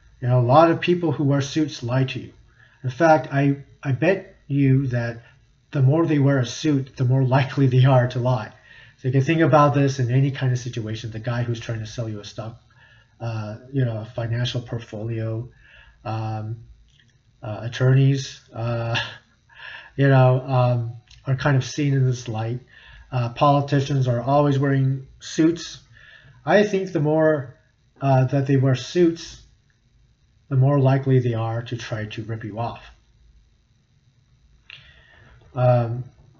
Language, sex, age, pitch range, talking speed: English, male, 40-59, 120-140 Hz, 160 wpm